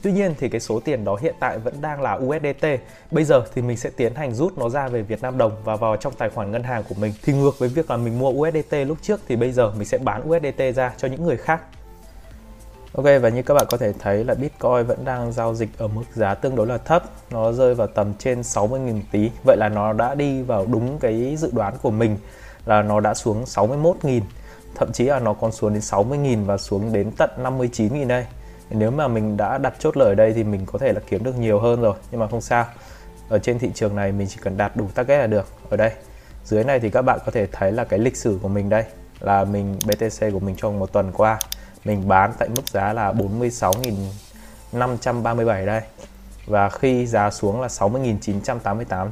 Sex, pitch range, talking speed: male, 100-125 Hz, 235 wpm